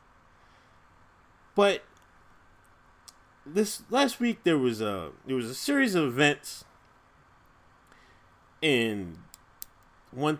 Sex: male